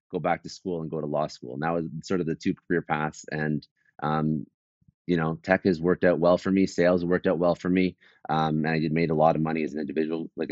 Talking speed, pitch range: 270 wpm, 80-85 Hz